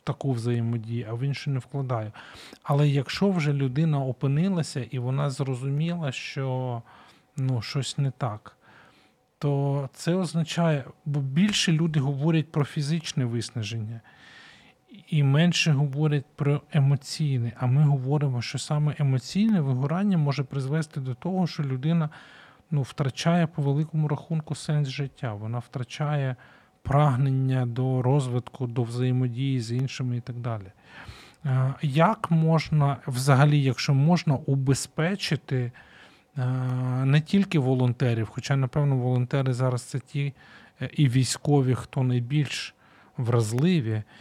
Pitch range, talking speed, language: 125-150 Hz, 120 wpm, Ukrainian